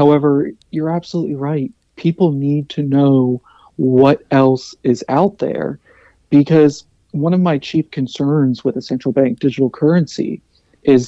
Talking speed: 140 wpm